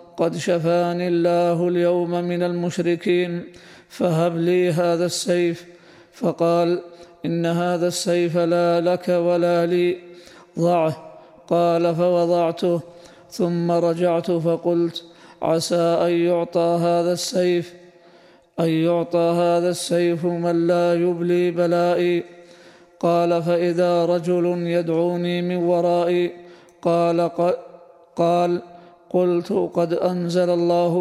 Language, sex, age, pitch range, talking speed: Arabic, male, 20-39, 170-175 Hz, 95 wpm